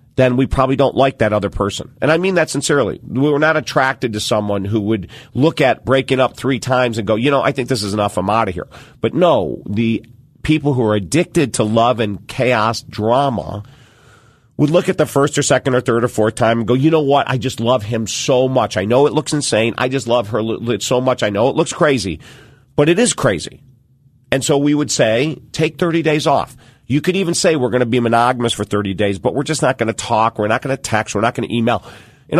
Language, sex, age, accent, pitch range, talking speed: English, male, 40-59, American, 110-135 Hz, 245 wpm